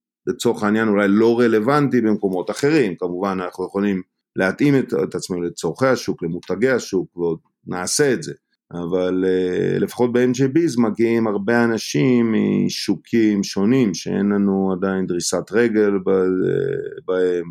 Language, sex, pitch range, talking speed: Hebrew, male, 95-125 Hz, 120 wpm